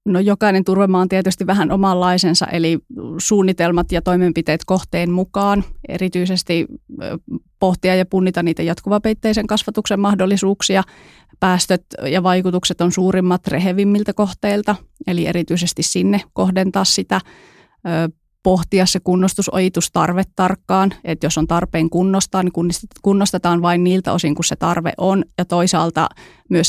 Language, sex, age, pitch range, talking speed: Finnish, female, 30-49, 165-190 Hz, 120 wpm